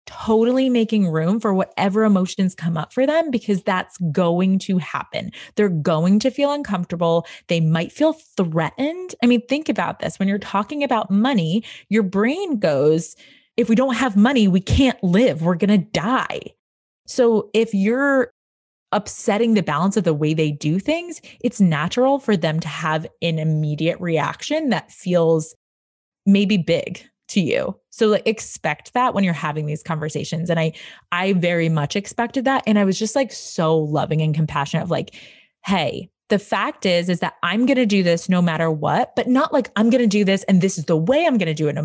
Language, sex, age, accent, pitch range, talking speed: English, female, 20-39, American, 165-225 Hz, 190 wpm